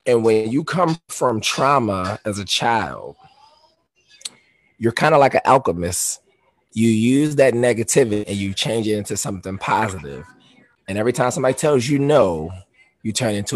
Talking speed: 160 wpm